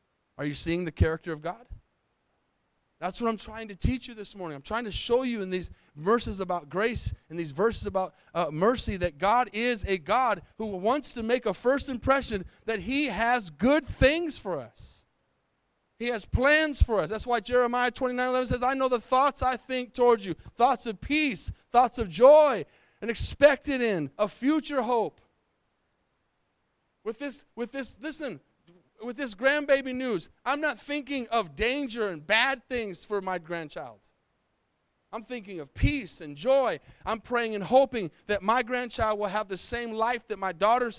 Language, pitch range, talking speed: English, 170-245 Hz, 185 wpm